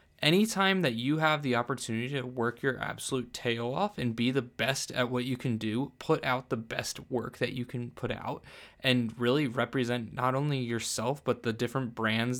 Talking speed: 200 wpm